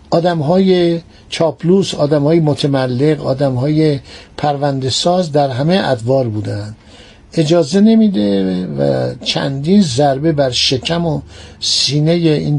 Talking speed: 105 wpm